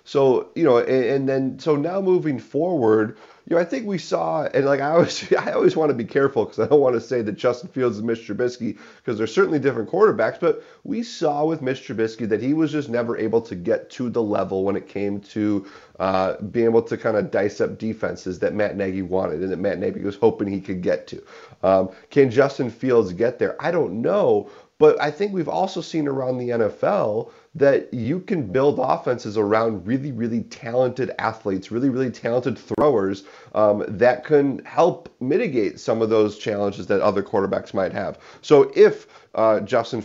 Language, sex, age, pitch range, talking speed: English, male, 30-49, 105-135 Hz, 205 wpm